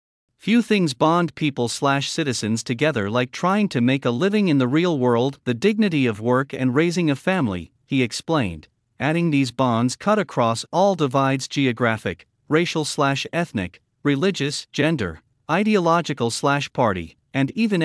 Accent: American